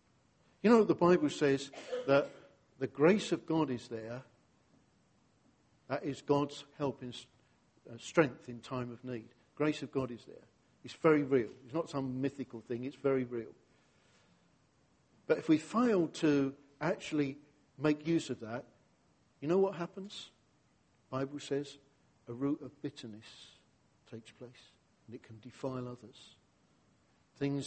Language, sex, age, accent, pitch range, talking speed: English, male, 50-69, British, 120-145 Hz, 145 wpm